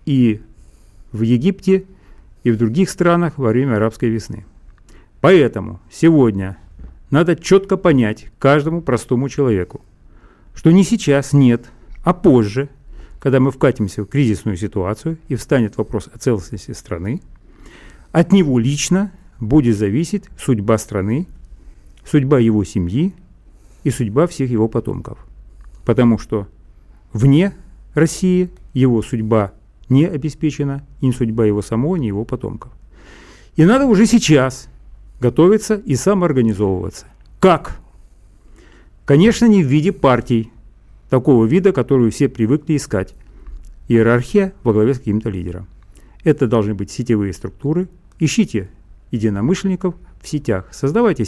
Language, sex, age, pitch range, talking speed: Russian, male, 40-59, 110-165 Hz, 120 wpm